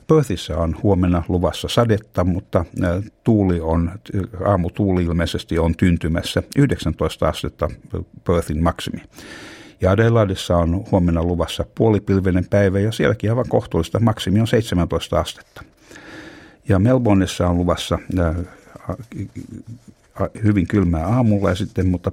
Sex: male